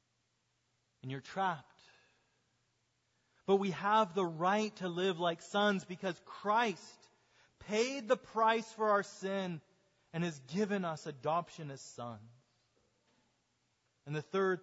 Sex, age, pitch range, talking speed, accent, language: male, 30-49, 130-175 Hz, 125 wpm, American, English